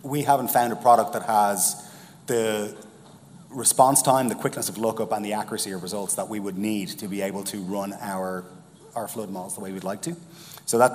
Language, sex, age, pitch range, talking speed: English, male, 30-49, 100-125 Hz, 215 wpm